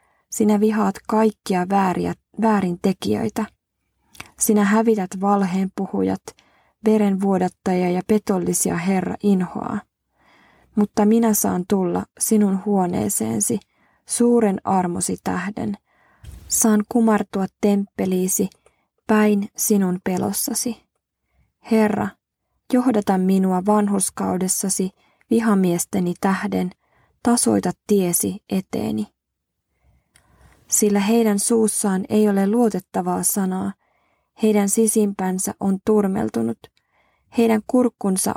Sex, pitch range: female, 185-220 Hz